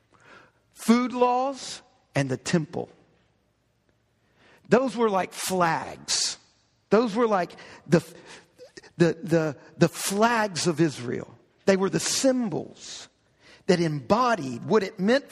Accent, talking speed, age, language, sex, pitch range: American, 110 wpm, 50-69, English, male, 170-235 Hz